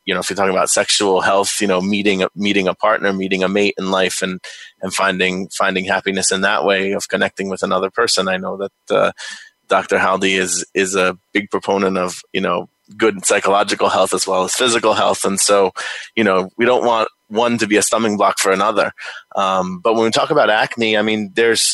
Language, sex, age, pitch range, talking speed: English, male, 20-39, 95-105 Hz, 220 wpm